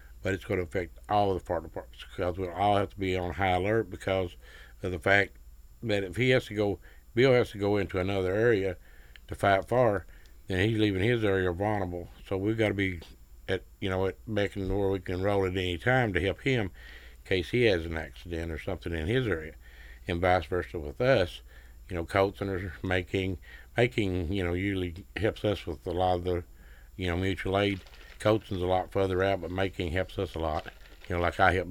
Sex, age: male, 60-79